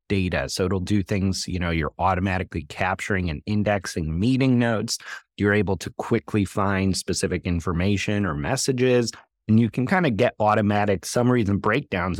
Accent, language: American, English